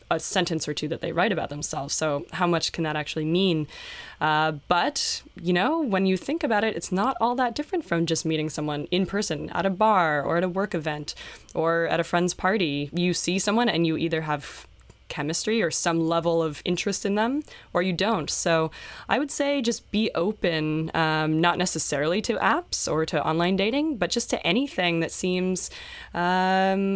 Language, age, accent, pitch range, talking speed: English, 20-39, American, 160-195 Hz, 200 wpm